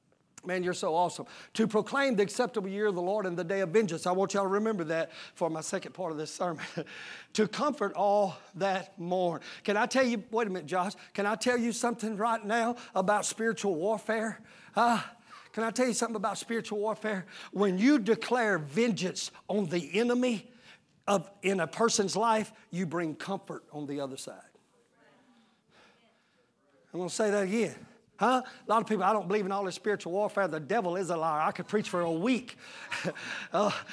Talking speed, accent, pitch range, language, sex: 195 wpm, American, 190-235 Hz, English, male